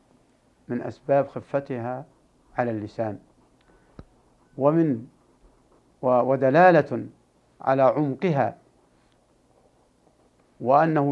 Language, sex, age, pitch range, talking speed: Arabic, male, 60-79, 125-175 Hz, 55 wpm